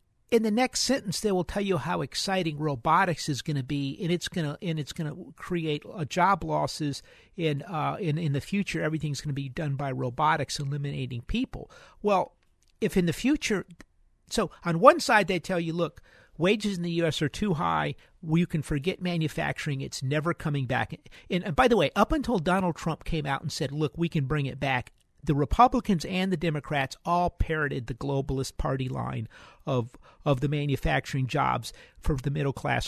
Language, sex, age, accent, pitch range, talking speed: English, male, 50-69, American, 140-180 Hz, 195 wpm